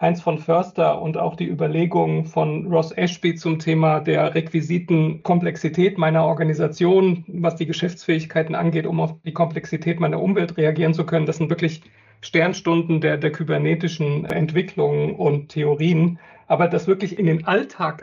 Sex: male